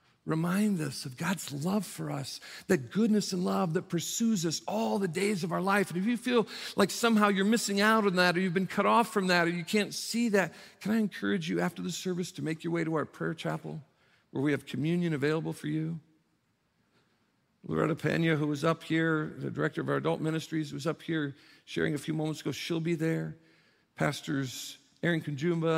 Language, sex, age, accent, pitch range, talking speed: English, male, 50-69, American, 150-180 Hz, 210 wpm